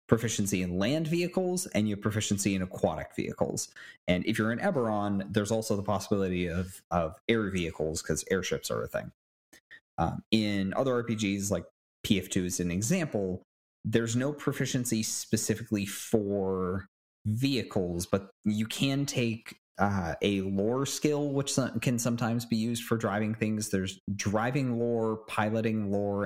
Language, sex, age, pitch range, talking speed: English, male, 30-49, 95-120 Hz, 145 wpm